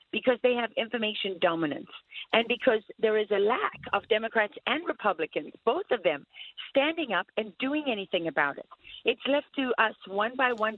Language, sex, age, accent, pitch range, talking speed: English, female, 40-59, American, 195-245 Hz, 180 wpm